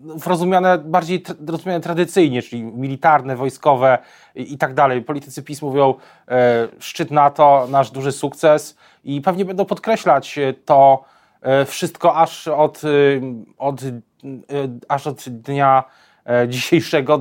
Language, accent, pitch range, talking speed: Polish, native, 130-150 Hz, 135 wpm